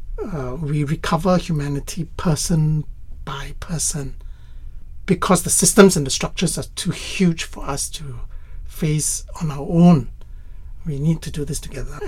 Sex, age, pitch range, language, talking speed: male, 60-79, 125-180 Hz, English, 145 wpm